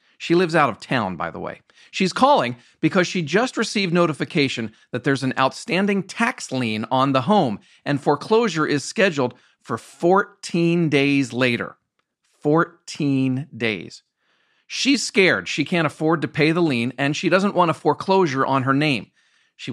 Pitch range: 135-185 Hz